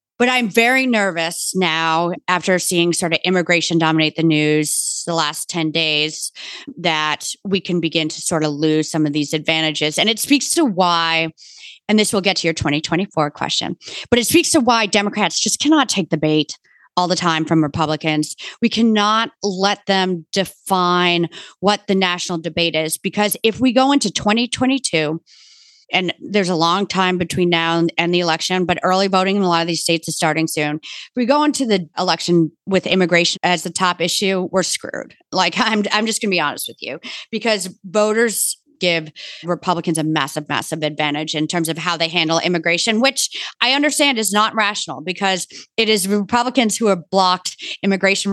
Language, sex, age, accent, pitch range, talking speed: English, female, 30-49, American, 165-210 Hz, 185 wpm